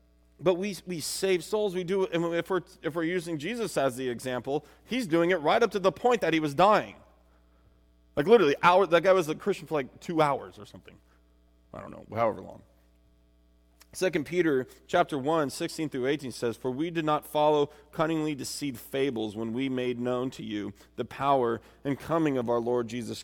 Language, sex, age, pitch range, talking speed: English, male, 30-49, 115-170 Hz, 205 wpm